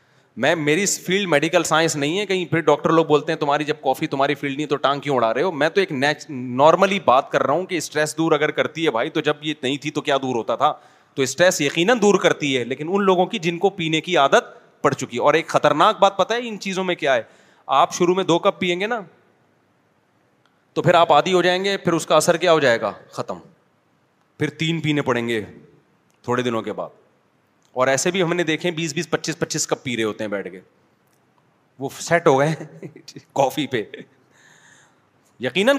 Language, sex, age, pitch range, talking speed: Urdu, male, 30-49, 140-180 Hz, 230 wpm